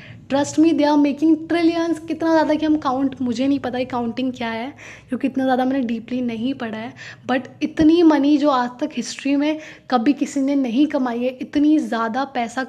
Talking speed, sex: 205 wpm, female